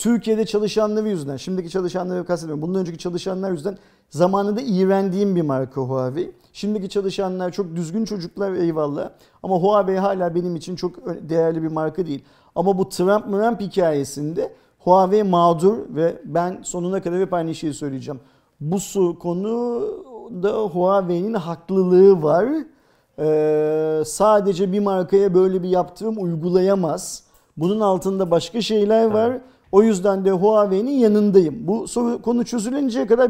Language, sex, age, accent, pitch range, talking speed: Turkish, male, 50-69, native, 175-215 Hz, 130 wpm